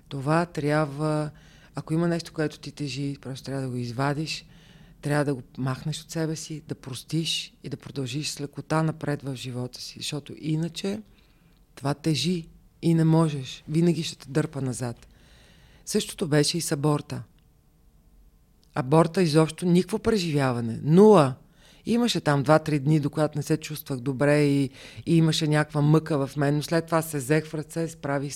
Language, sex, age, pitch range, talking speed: Bulgarian, female, 40-59, 135-160 Hz, 165 wpm